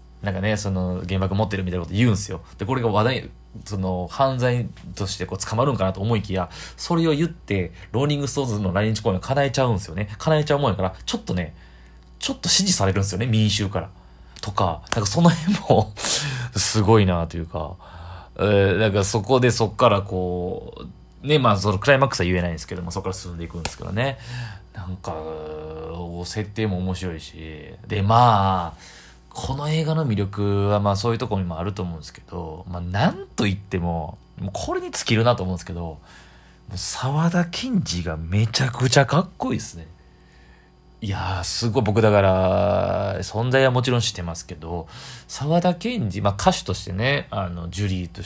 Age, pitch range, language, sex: 20-39, 90-120 Hz, Japanese, male